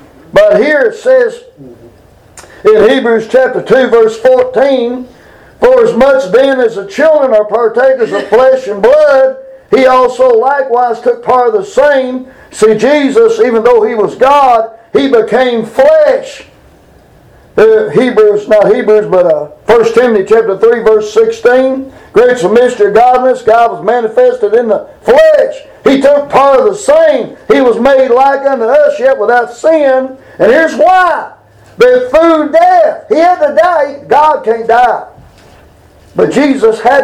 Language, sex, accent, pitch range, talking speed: English, male, American, 240-380 Hz, 150 wpm